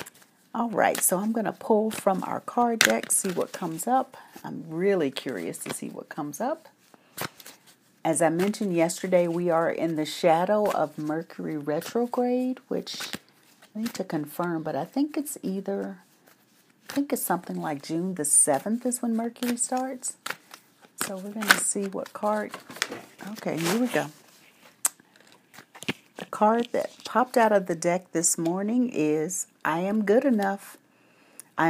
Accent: American